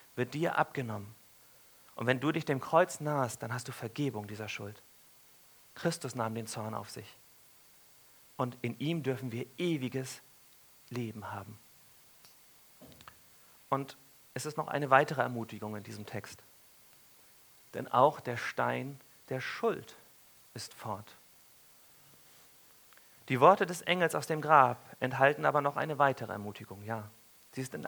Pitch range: 115-150 Hz